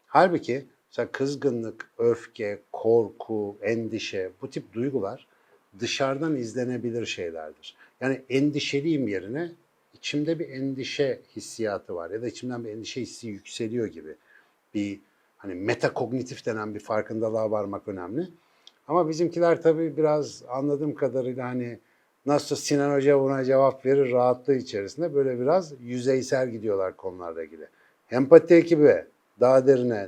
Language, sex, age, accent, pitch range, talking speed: Turkish, male, 60-79, native, 115-140 Hz, 120 wpm